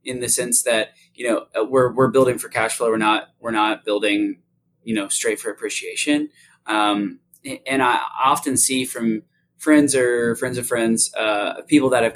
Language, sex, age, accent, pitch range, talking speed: English, male, 20-39, American, 110-170 Hz, 185 wpm